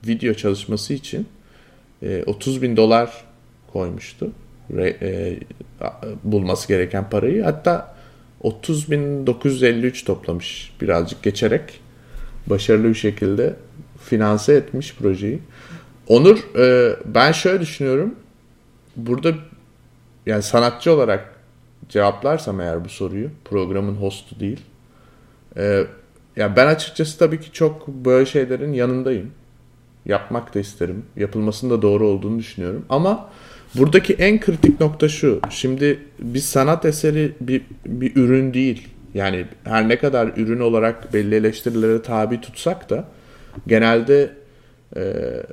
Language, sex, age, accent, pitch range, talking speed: Turkish, male, 30-49, native, 110-140 Hz, 105 wpm